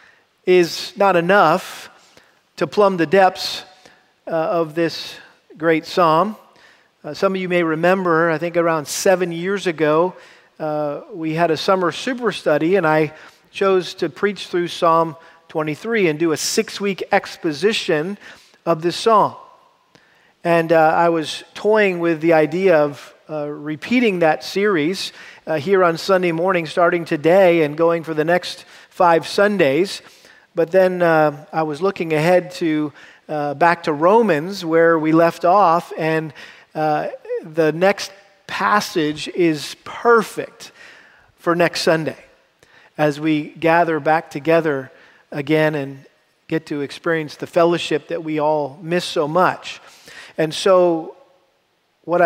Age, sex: 40-59, male